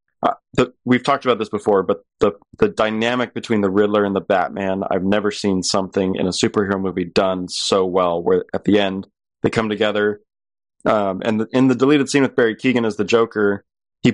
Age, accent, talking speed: 20-39, American, 200 wpm